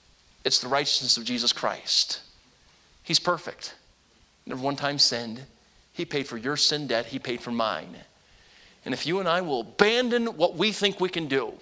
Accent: American